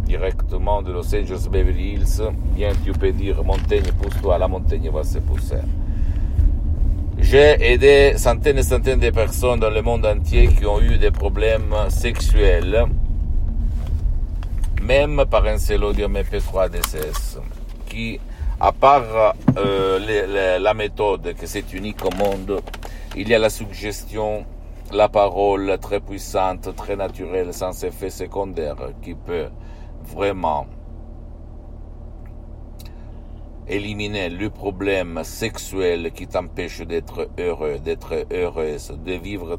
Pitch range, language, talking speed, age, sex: 80-100 Hz, Italian, 125 wpm, 50-69, male